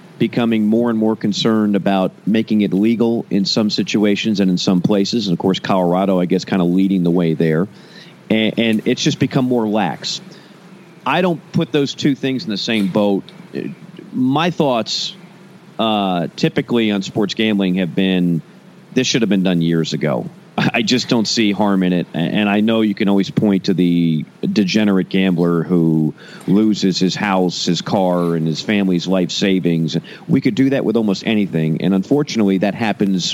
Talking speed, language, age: 180 wpm, English, 40-59